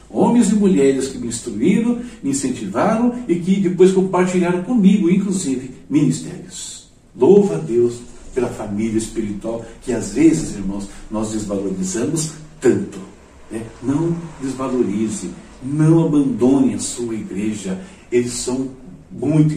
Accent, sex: Brazilian, male